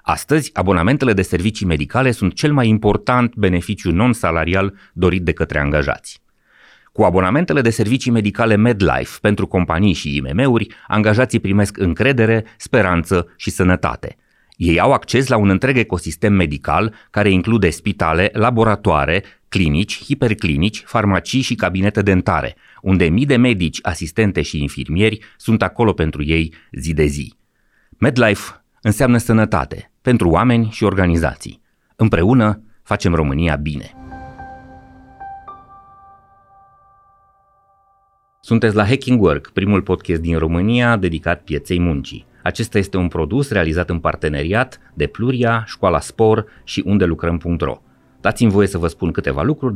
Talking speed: 130 wpm